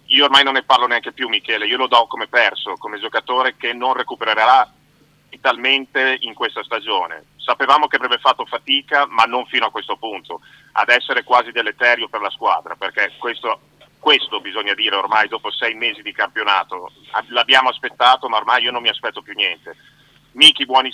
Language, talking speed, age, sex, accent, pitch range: Italian, 180 wpm, 40-59, male, native, 120-145 Hz